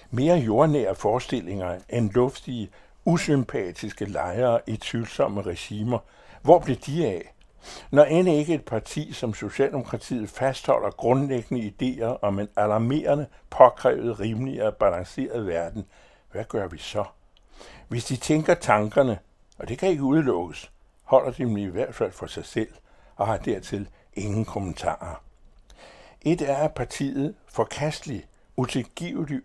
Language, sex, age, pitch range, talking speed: Danish, male, 60-79, 105-140 Hz, 130 wpm